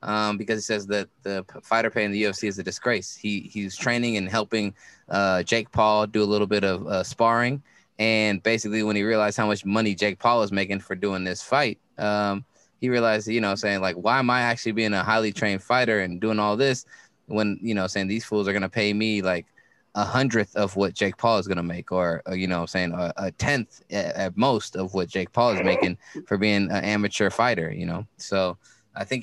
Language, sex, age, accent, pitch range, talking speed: English, male, 20-39, American, 95-110 Hz, 225 wpm